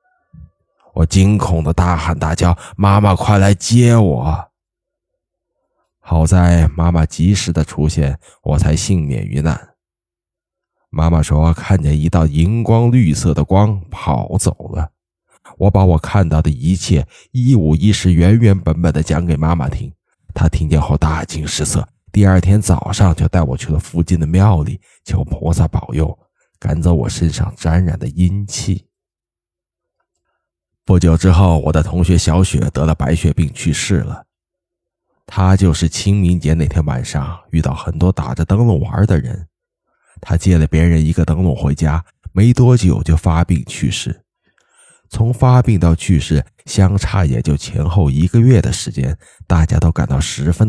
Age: 20-39